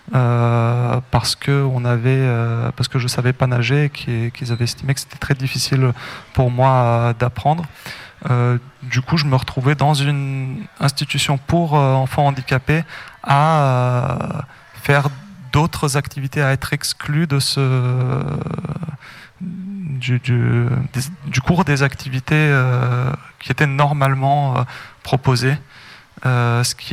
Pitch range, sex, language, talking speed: 125-140 Hz, male, French, 140 wpm